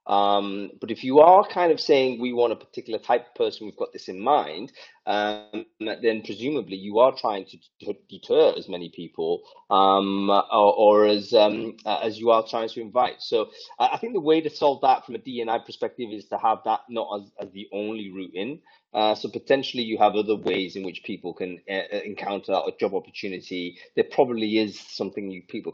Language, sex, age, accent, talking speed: English, male, 30-49, British, 210 wpm